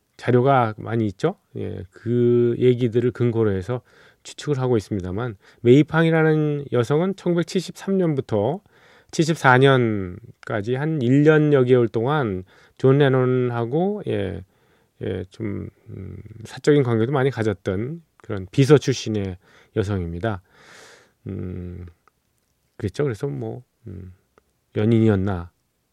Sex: male